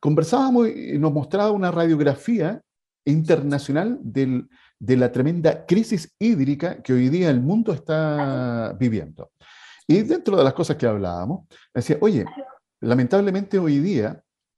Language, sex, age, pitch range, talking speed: Spanish, male, 50-69, 125-180 Hz, 130 wpm